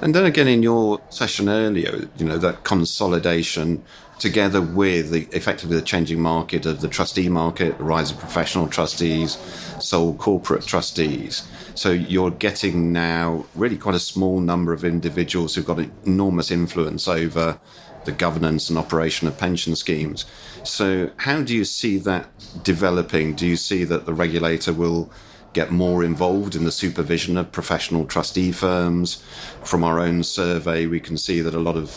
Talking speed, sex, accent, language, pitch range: 170 wpm, male, British, English, 80-90 Hz